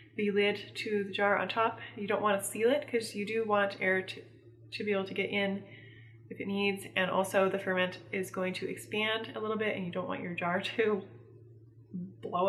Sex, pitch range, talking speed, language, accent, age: female, 190-225 Hz, 220 wpm, English, American, 20-39